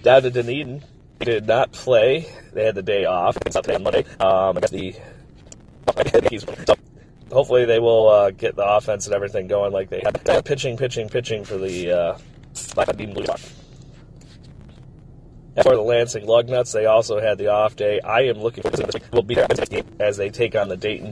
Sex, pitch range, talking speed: male, 100-130 Hz, 185 wpm